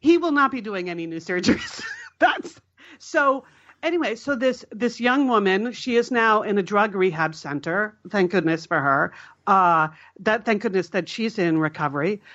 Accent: American